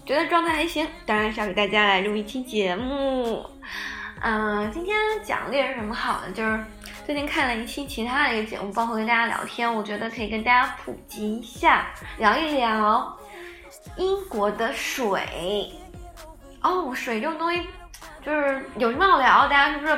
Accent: native